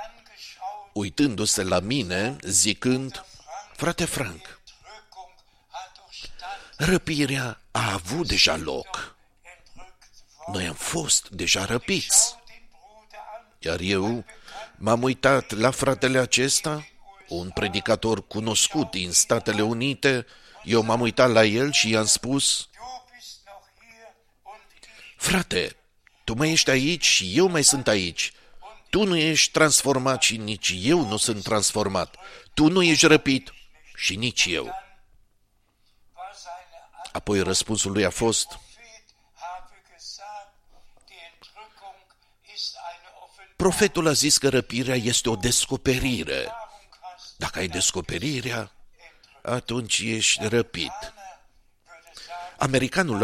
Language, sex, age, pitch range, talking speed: Romanian, male, 50-69, 110-170 Hz, 95 wpm